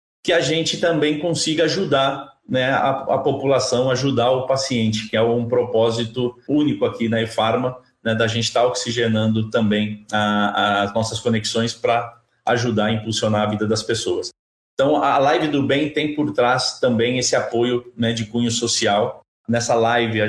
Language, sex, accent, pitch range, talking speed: Portuguese, male, Brazilian, 105-120 Hz, 170 wpm